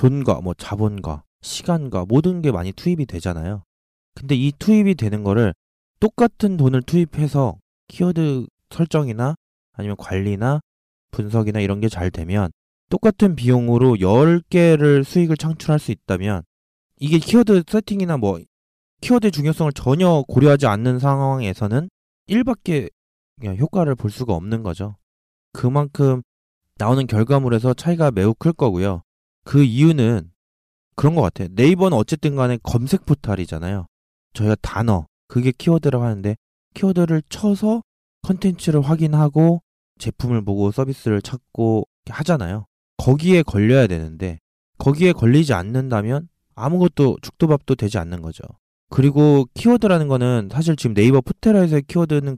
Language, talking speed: English, 110 wpm